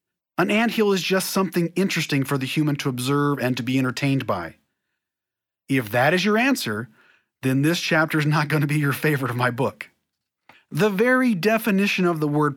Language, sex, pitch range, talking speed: English, male, 140-200 Hz, 190 wpm